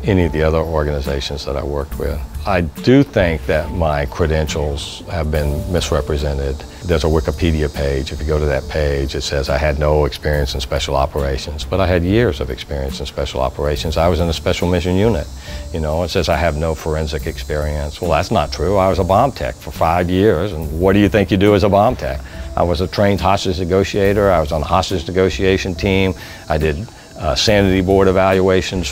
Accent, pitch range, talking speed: American, 75-100 Hz, 215 wpm